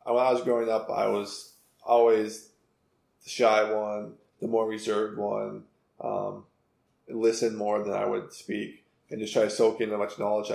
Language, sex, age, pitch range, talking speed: English, male, 20-39, 105-115 Hz, 175 wpm